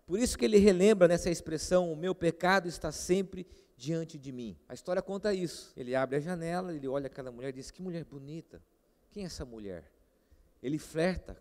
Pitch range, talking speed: 145-195 Hz, 200 wpm